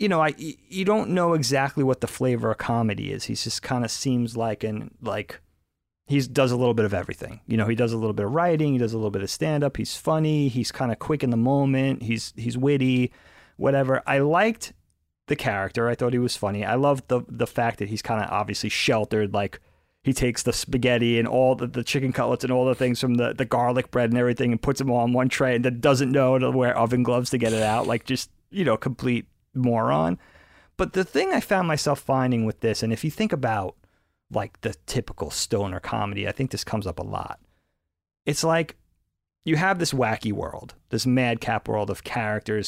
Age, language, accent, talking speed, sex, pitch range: 30-49, English, American, 230 wpm, male, 110-135 Hz